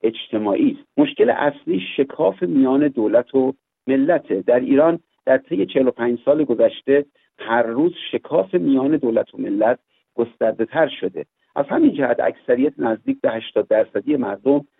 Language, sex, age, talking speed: Persian, male, 50-69, 140 wpm